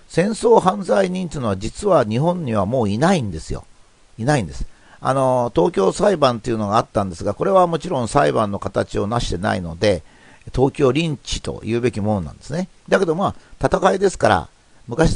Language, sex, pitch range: Japanese, male, 110-155 Hz